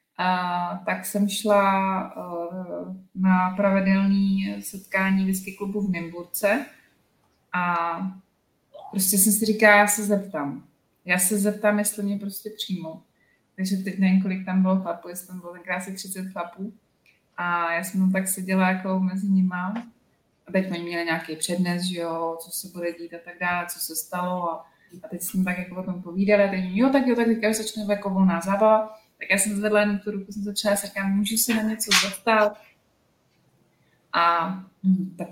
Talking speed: 175 wpm